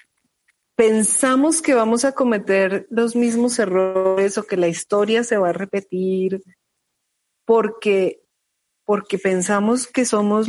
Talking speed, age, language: 120 wpm, 40-59, Spanish